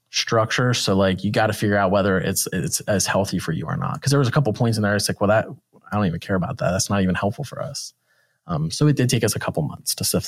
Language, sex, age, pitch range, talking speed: English, male, 20-39, 100-130 Hz, 310 wpm